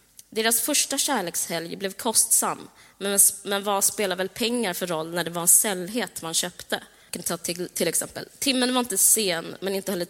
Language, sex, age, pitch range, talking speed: Swedish, female, 20-39, 170-215 Hz, 165 wpm